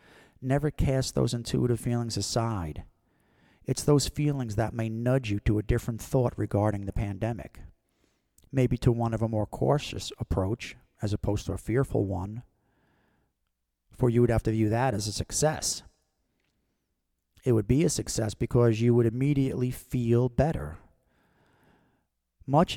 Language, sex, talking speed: English, male, 150 wpm